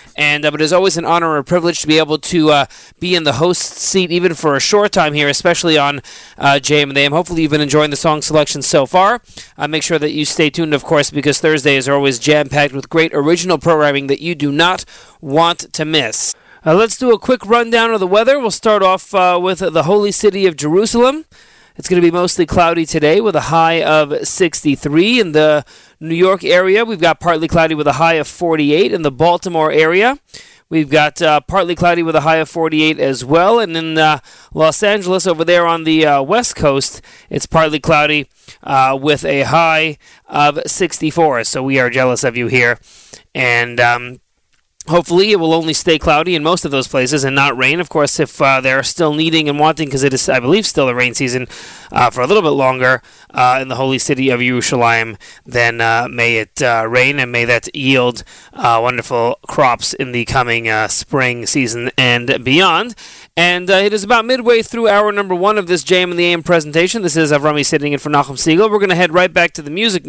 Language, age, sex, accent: English, 30-49, male, American